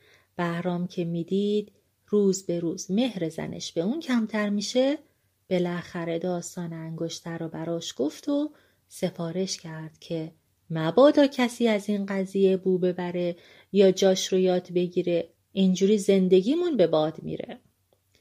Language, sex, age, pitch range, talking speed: Persian, female, 30-49, 165-205 Hz, 130 wpm